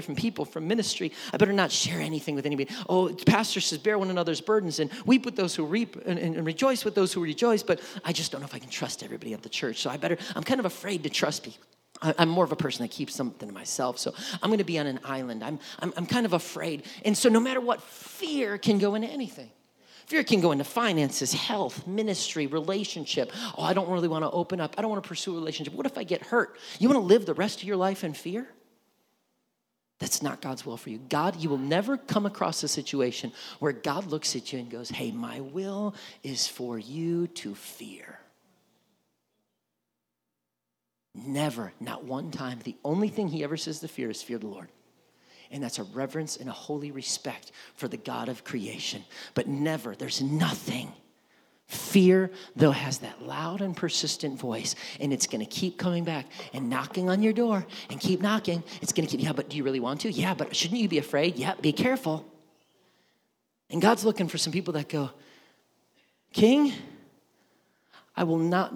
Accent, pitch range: American, 145-205 Hz